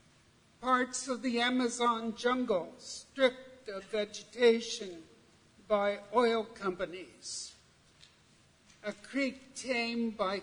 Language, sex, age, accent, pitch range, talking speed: English, male, 60-79, American, 205-245 Hz, 85 wpm